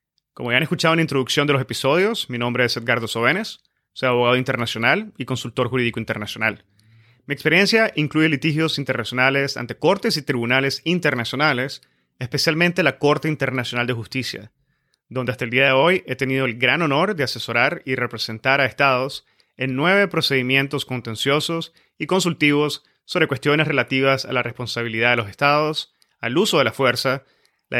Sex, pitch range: male, 120-150 Hz